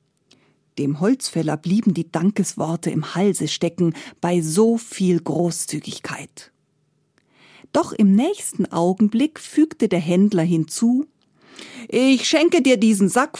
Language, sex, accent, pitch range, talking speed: German, female, German, 165-255 Hz, 110 wpm